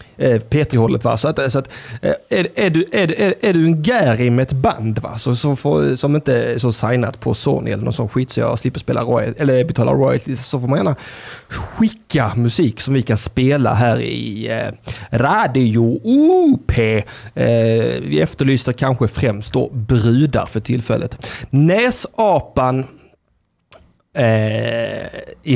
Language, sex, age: Swedish, male, 30-49